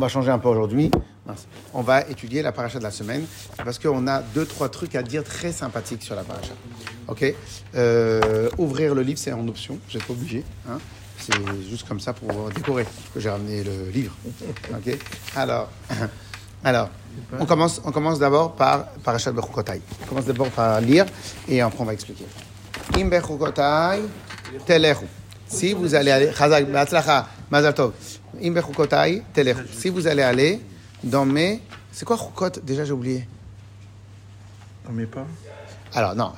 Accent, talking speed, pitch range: French, 155 wpm, 105-145 Hz